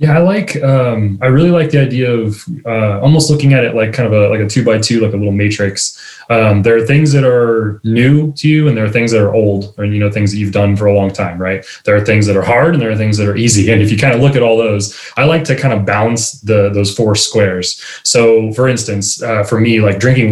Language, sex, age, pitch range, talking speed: English, male, 20-39, 105-125 Hz, 285 wpm